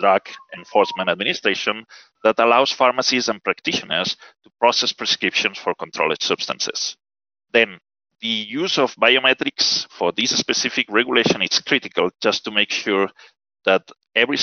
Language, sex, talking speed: English, male, 130 wpm